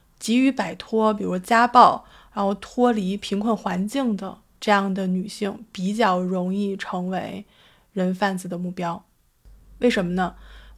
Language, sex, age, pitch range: Chinese, female, 20-39, 190-230 Hz